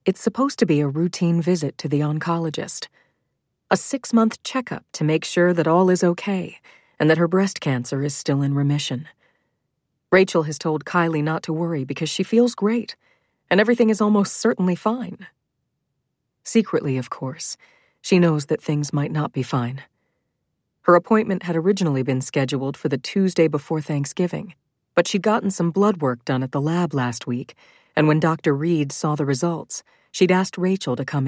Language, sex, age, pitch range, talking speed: English, female, 40-59, 140-180 Hz, 175 wpm